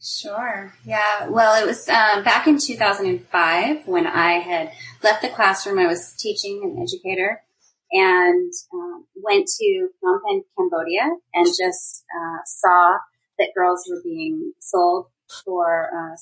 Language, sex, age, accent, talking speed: English, female, 30-49, American, 140 wpm